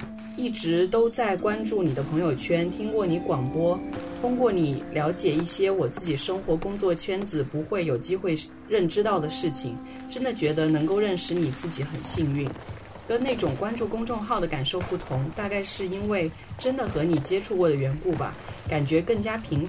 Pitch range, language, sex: 150-200 Hz, Chinese, female